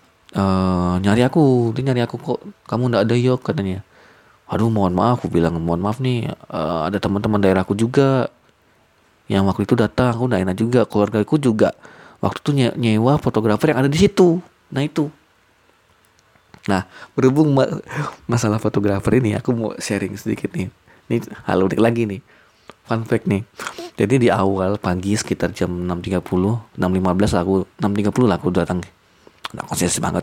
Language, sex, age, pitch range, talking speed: Indonesian, male, 20-39, 95-130 Hz, 155 wpm